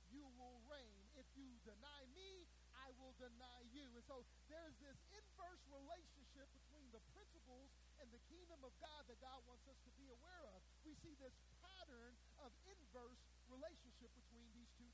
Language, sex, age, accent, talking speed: English, male, 40-59, American, 175 wpm